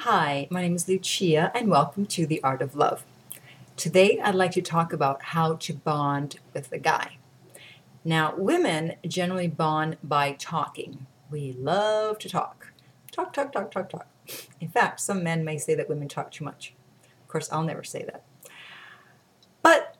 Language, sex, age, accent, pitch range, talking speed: English, female, 40-59, American, 155-190 Hz, 170 wpm